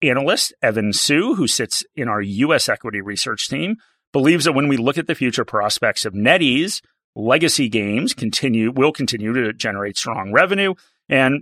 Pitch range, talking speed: 110-145 Hz, 170 wpm